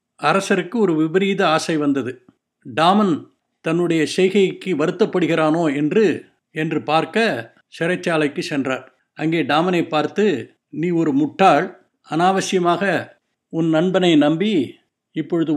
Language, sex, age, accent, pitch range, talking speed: Tamil, male, 60-79, native, 150-185 Hz, 95 wpm